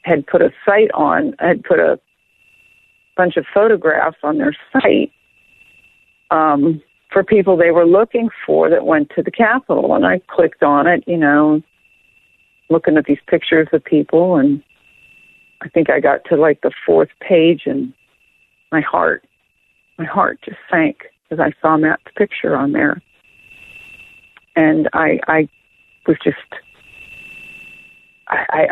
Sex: female